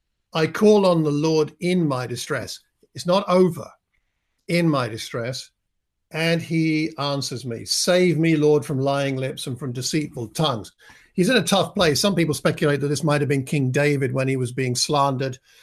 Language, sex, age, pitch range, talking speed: English, male, 50-69, 135-170 Hz, 185 wpm